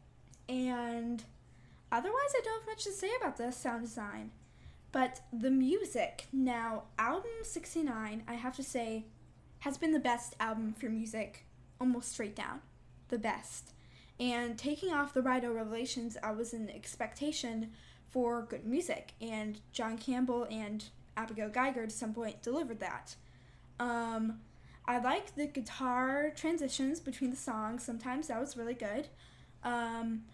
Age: 10-29